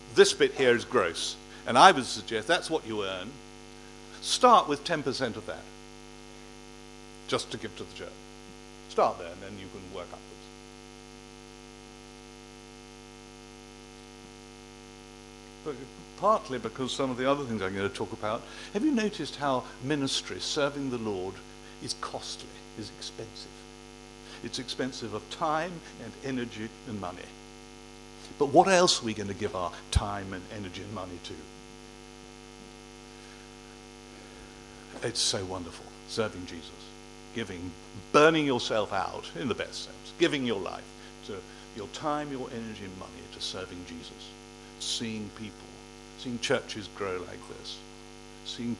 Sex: male